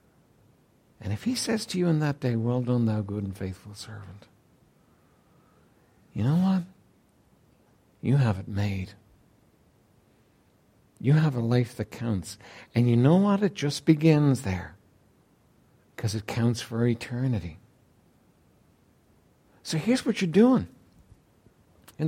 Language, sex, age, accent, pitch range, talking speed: English, male, 60-79, American, 105-170 Hz, 130 wpm